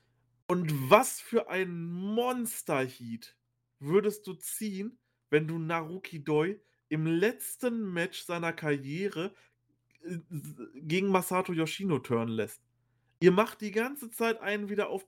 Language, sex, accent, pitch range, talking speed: German, male, German, 155-215 Hz, 120 wpm